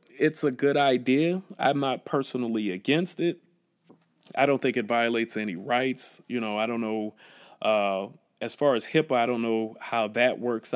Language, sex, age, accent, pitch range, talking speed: English, male, 30-49, American, 110-135 Hz, 180 wpm